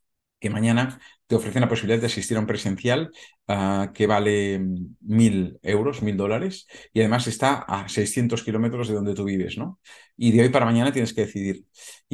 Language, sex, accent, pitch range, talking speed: Spanish, male, Spanish, 100-115 Hz, 190 wpm